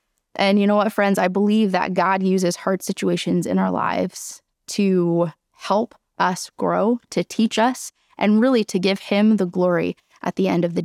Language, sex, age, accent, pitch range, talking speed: English, female, 20-39, American, 185-215 Hz, 190 wpm